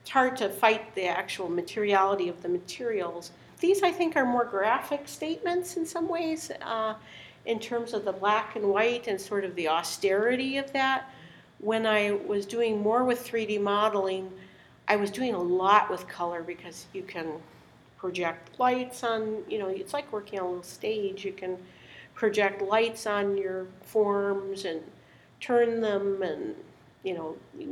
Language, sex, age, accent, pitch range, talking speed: English, female, 50-69, American, 185-240 Hz, 170 wpm